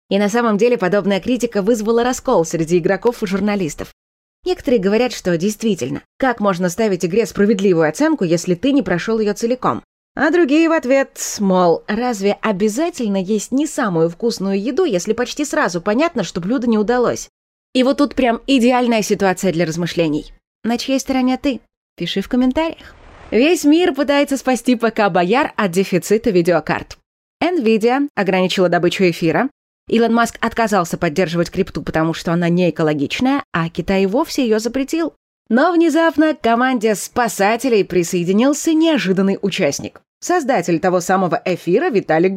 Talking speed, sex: 145 wpm, female